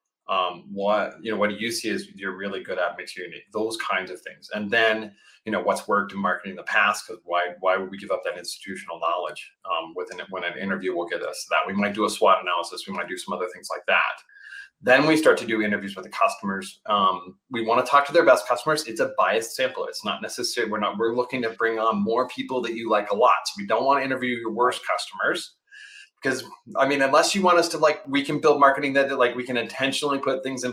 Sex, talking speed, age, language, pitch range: male, 260 wpm, 30-49, English, 110-155 Hz